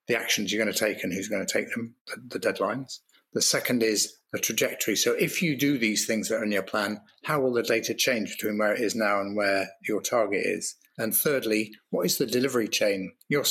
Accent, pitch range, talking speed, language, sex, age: British, 105-120 Hz, 230 wpm, English, male, 30-49